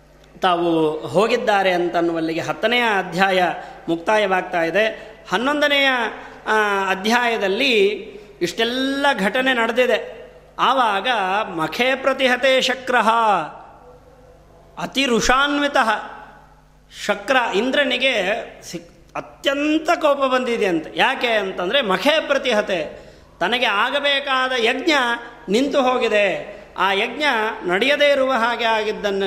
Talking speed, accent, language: 80 wpm, native, Kannada